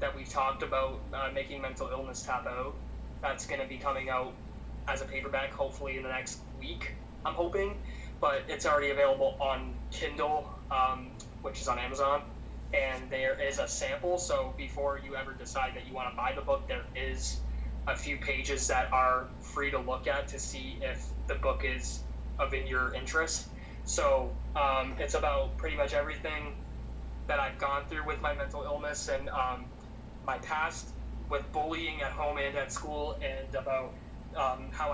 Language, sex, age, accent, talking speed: English, male, 20-39, American, 180 wpm